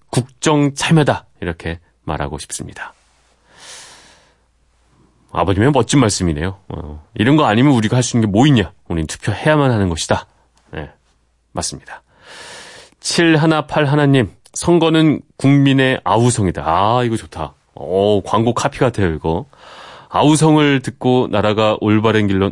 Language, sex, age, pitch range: Korean, male, 30-49, 95-140 Hz